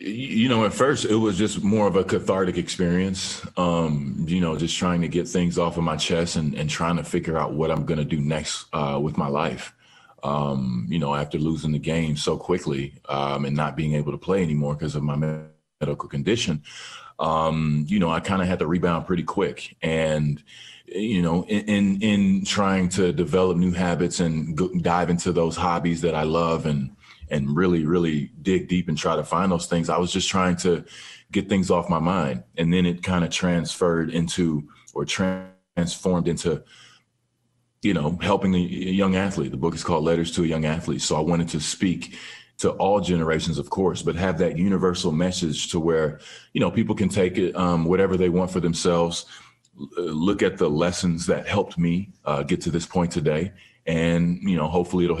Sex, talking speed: male, 200 wpm